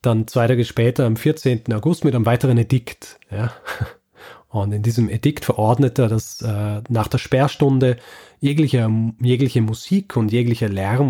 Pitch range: 110-130 Hz